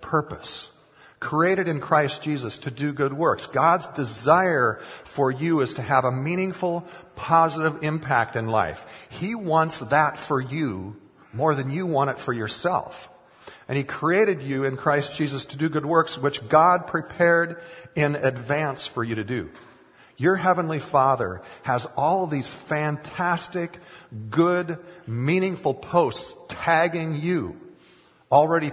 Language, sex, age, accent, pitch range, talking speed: English, male, 50-69, American, 115-155 Hz, 140 wpm